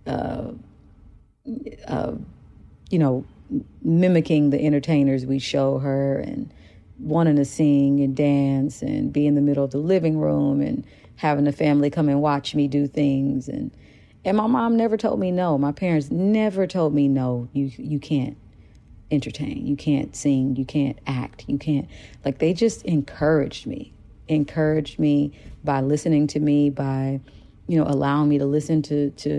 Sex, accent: female, American